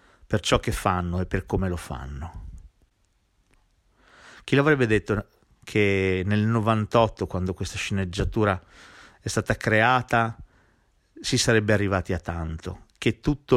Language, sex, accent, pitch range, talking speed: Italian, male, native, 90-115 Hz, 125 wpm